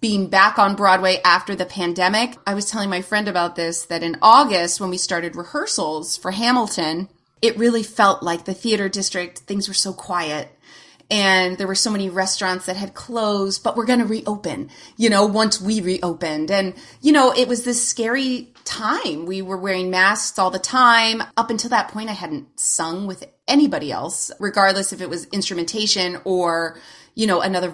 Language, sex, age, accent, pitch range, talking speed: English, female, 30-49, American, 180-230 Hz, 190 wpm